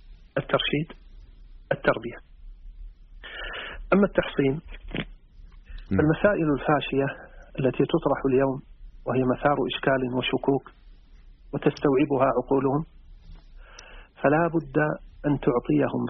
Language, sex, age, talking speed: Arabic, male, 40-59, 70 wpm